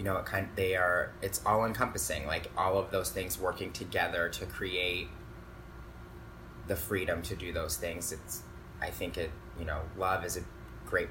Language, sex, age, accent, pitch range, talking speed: English, male, 20-39, American, 95-110 Hz, 185 wpm